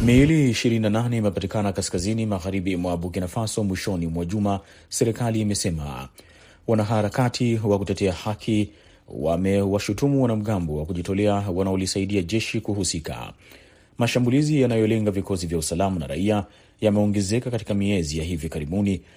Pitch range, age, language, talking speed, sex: 95-110 Hz, 30-49, Swahili, 120 wpm, male